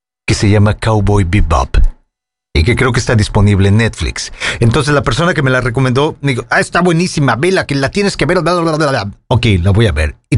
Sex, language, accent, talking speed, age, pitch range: male, English, Mexican, 235 wpm, 40-59, 110-160 Hz